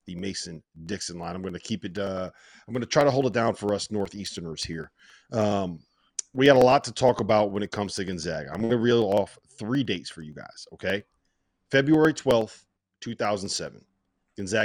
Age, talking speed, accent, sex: 40-59, 200 wpm, American, male